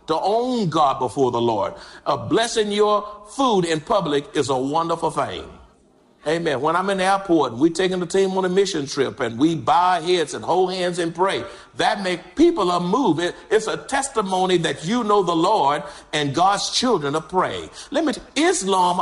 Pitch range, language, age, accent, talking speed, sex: 170-245 Hz, English, 50-69, American, 200 wpm, male